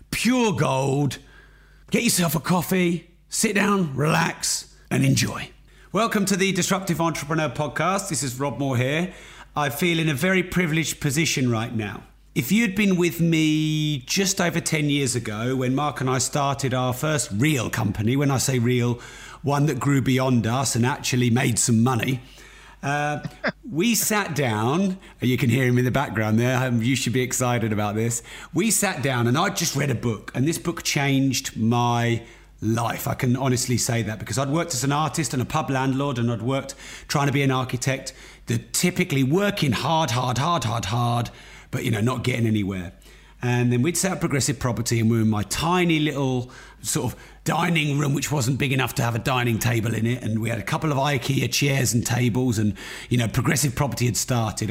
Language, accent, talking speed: English, British, 200 wpm